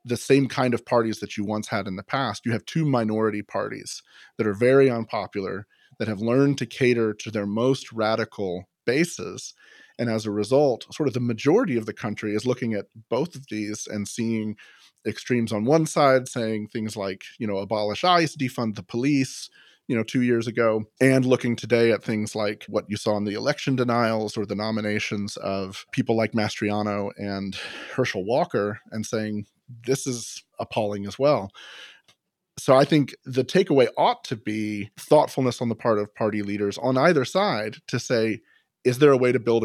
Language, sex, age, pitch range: English, male, 30-49, 105-130 Hz